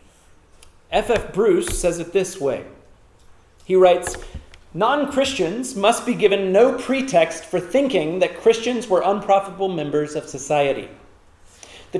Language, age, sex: English, 40-59, male